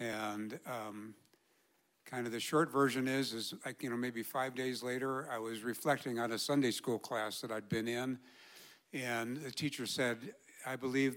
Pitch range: 115-140 Hz